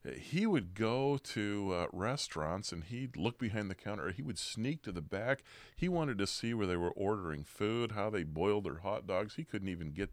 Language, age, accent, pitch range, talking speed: English, 40-59, American, 85-110 Hz, 220 wpm